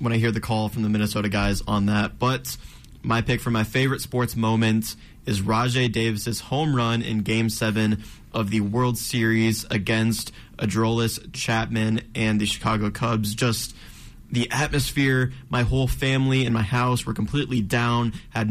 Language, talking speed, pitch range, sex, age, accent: English, 165 wpm, 110-125 Hz, male, 20-39, American